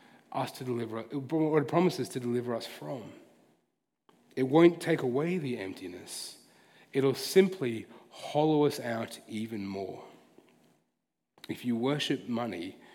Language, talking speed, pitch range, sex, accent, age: English, 125 wpm, 120-170 Hz, male, Australian, 30-49